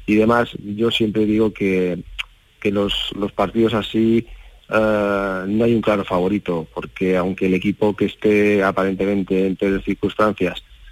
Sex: male